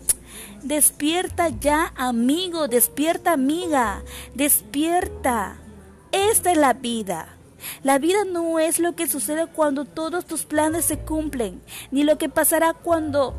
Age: 30-49